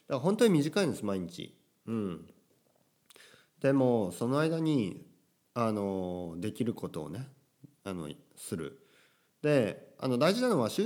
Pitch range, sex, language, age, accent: 95-145 Hz, male, Japanese, 40-59, native